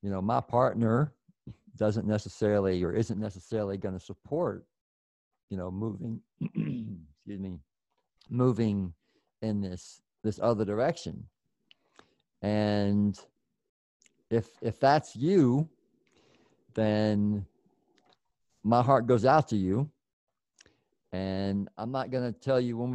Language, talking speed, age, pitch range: English, 105 wpm, 50-69, 100-125 Hz